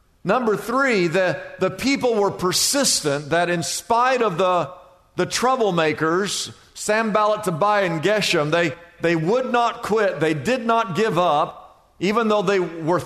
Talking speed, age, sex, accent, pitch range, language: 145 wpm, 50-69, male, American, 165-220 Hz, English